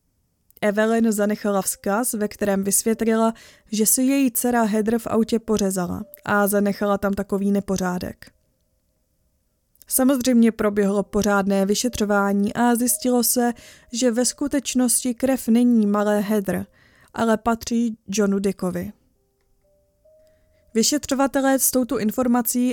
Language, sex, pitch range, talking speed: Czech, female, 200-235 Hz, 110 wpm